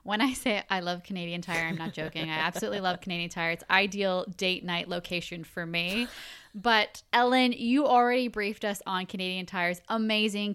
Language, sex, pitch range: English, female, 180-220 Hz